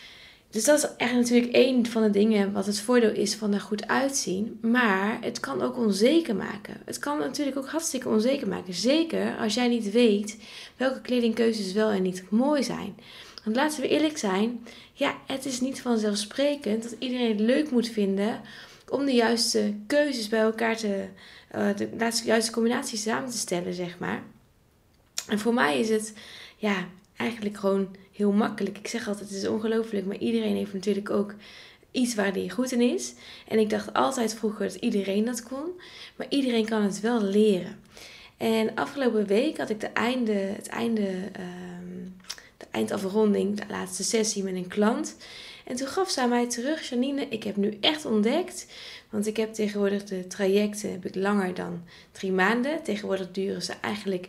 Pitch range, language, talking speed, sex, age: 200-240 Hz, Dutch, 180 wpm, female, 20-39